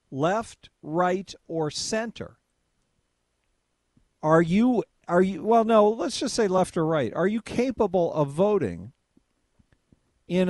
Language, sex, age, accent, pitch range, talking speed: English, male, 50-69, American, 130-180 Hz, 125 wpm